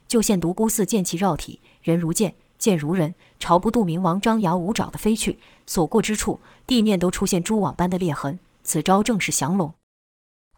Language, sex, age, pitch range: Chinese, female, 20-39, 170-215 Hz